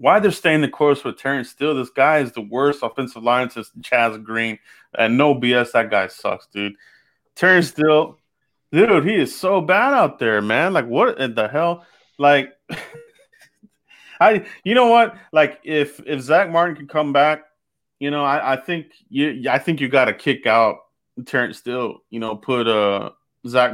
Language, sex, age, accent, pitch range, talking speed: English, male, 30-49, American, 120-165 Hz, 180 wpm